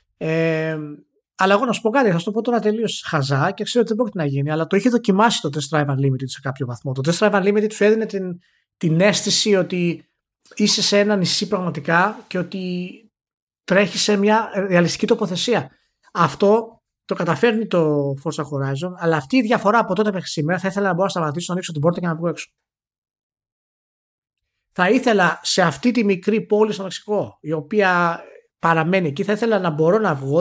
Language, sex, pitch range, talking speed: Greek, male, 155-210 Hz, 200 wpm